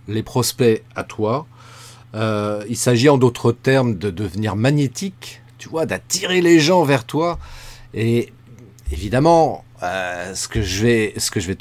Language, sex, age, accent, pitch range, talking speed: French, male, 40-59, French, 115-155 Hz, 140 wpm